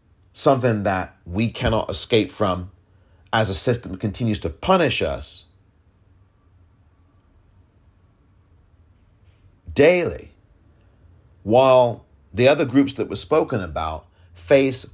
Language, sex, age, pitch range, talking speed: English, male, 40-59, 90-115 Hz, 90 wpm